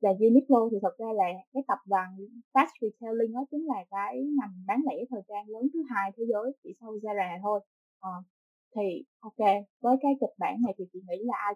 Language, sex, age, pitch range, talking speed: Vietnamese, female, 20-39, 195-255 Hz, 225 wpm